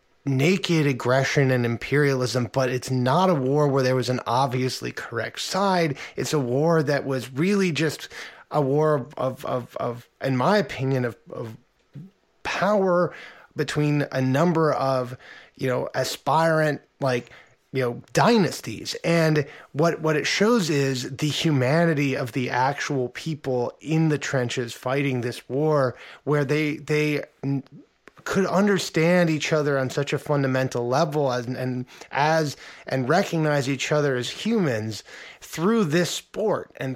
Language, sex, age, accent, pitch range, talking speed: English, male, 20-39, American, 130-165 Hz, 145 wpm